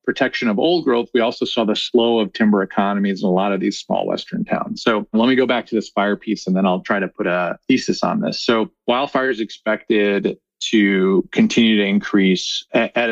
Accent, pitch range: American, 105-130 Hz